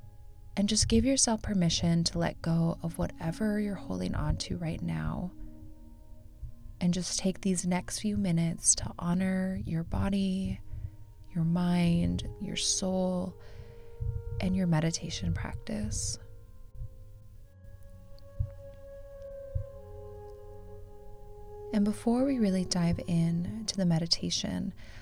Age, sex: 20-39, female